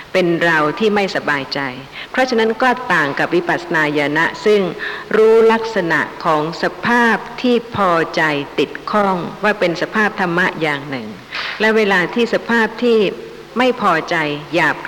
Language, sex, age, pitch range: Thai, female, 60-79, 155-210 Hz